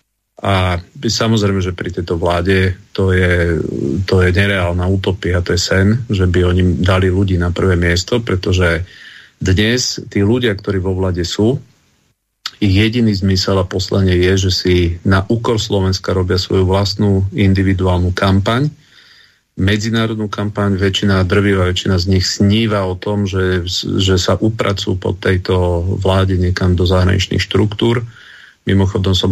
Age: 40-59